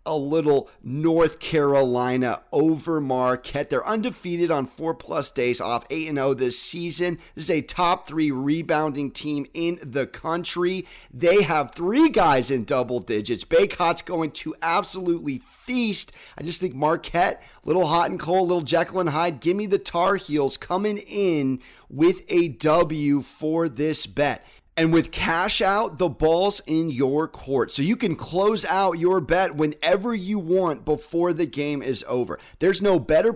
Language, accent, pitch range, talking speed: English, American, 150-185 Hz, 160 wpm